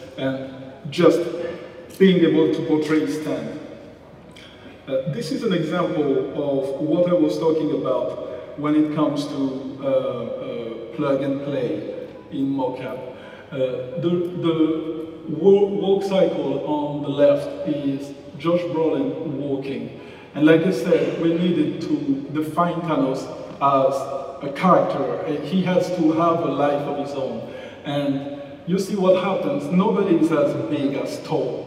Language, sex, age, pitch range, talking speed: Italian, male, 50-69, 140-175 Hz, 140 wpm